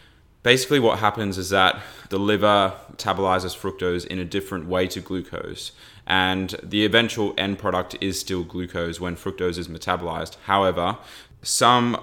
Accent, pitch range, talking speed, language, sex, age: Australian, 90-100 Hz, 145 wpm, English, male, 20-39